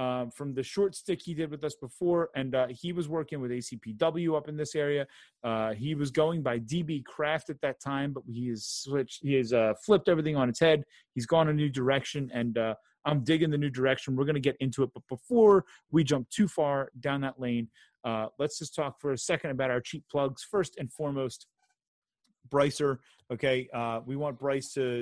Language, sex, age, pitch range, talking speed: English, male, 30-49, 115-145 Hz, 215 wpm